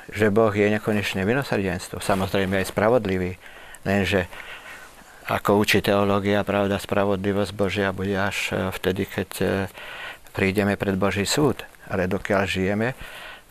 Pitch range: 95-105 Hz